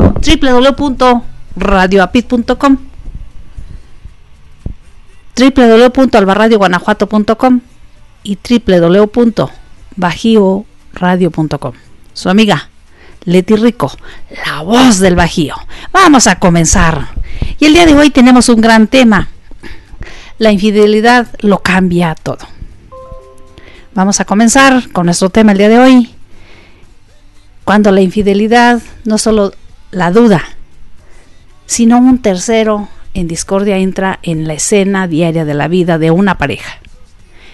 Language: Spanish